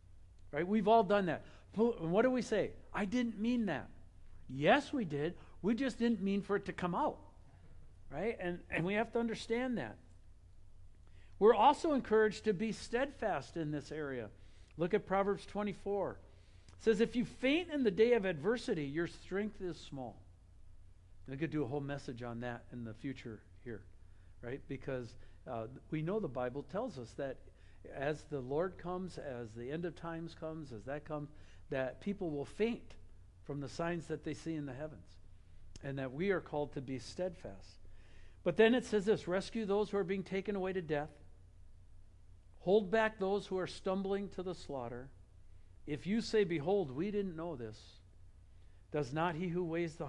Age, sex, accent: 60-79, male, American